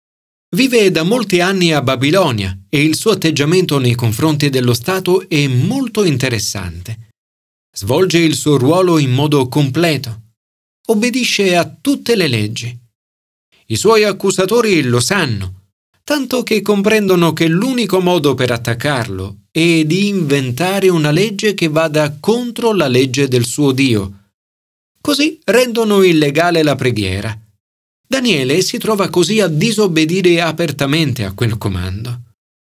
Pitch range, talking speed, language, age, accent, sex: 115-190 Hz, 130 wpm, Italian, 40-59, native, male